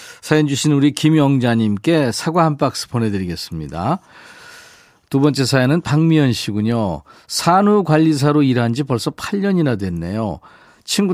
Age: 40-59